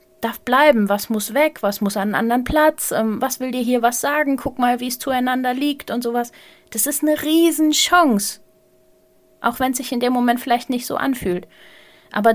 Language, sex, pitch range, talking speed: German, female, 200-255 Hz, 200 wpm